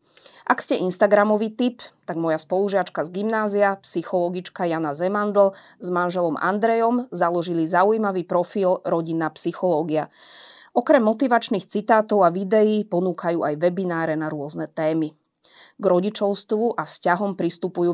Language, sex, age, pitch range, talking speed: Slovak, female, 30-49, 165-210 Hz, 120 wpm